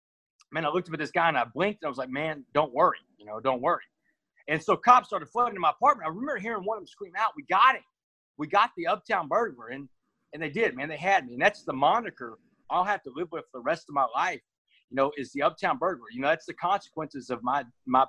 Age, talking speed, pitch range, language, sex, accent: 30-49, 270 wpm, 130-185 Hz, English, male, American